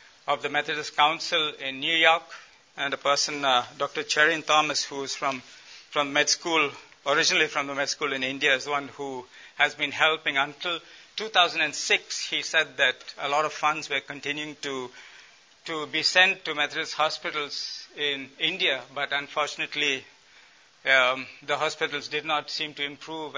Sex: male